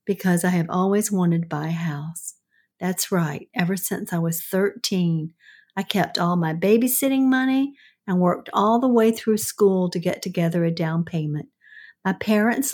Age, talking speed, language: 50-69, 175 wpm, English